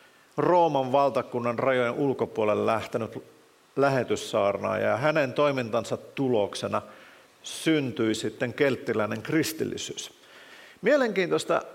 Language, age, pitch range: Finnish, 50-69, 125-170 Hz